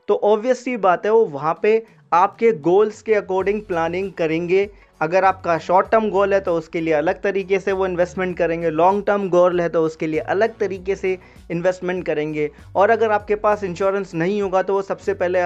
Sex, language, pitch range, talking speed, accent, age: male, Hindi, 170-210 Hz, 200 wpm, native, 20-39